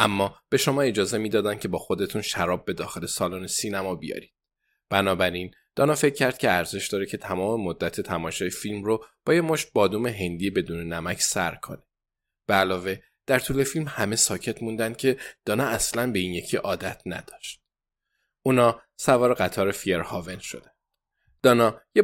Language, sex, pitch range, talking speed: Persian, male, 100-130 Hz, 160 wpm